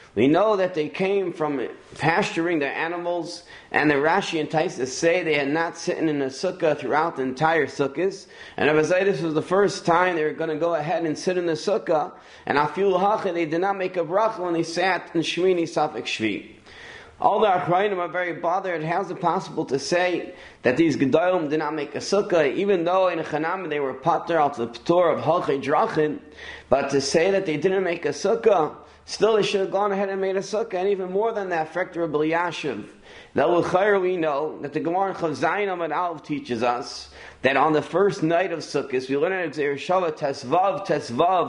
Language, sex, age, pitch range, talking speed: English, male, 30-49, 155-185 Hz, 210 wpm